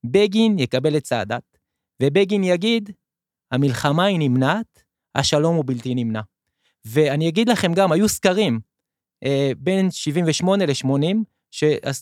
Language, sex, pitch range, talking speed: Hebrew, male, 130-190 Hz, 110 wpm